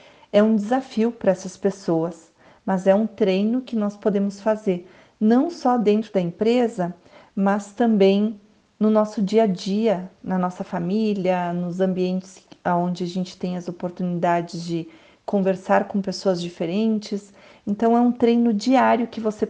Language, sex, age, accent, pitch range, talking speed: Portuguese, female, 40-59, Brazilian, 180-215 Hz, 150 wpm